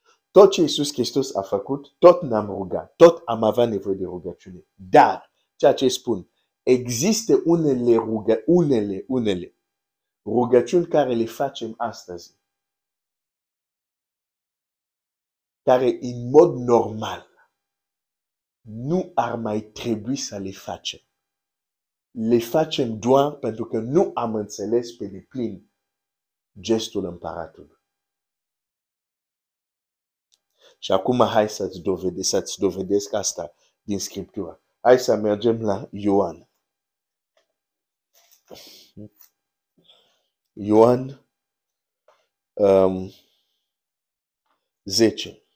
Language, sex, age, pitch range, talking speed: Romanian, male, 50-69, 100-130 Hz, 95 wpm